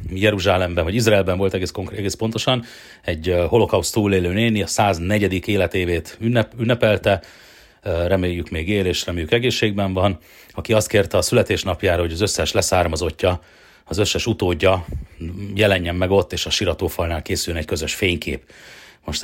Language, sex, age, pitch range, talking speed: Hungarian, male, 40-59, 85-110 Hz, 145 wpm